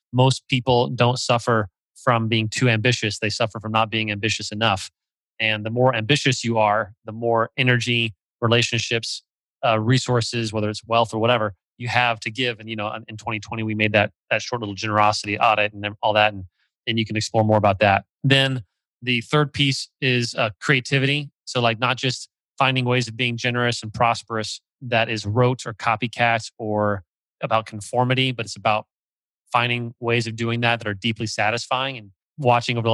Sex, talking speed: male, 185 wpm